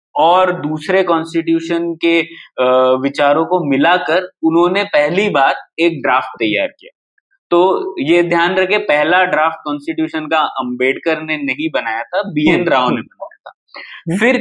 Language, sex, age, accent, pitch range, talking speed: Hindi, male, 20-39, native, 140-195 Hz, 135 wpm